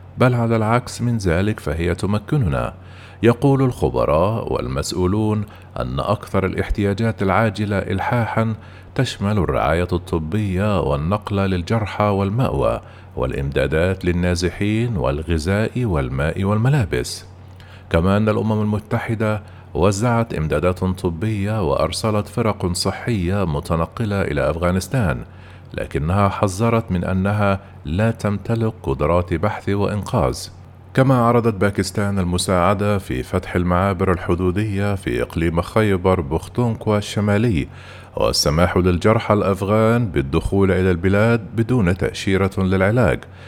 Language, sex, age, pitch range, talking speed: Arabic, male, 50-69, 90-110 Hz, 95 wpm